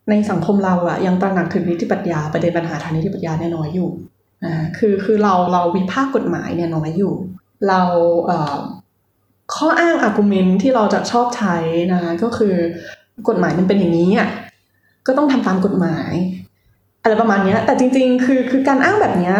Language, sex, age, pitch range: Thai, female, 20-39, 175-240 Hz